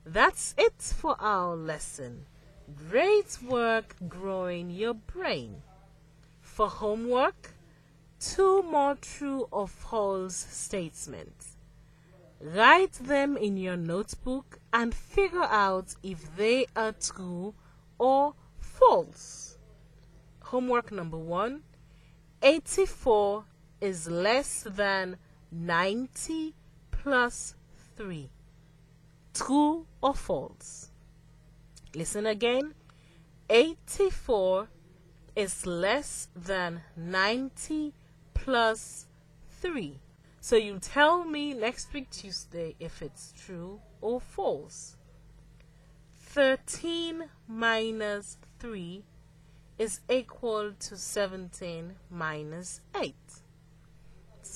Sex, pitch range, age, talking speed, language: female, 155-235 Hz, 40-59, 80 wpm, English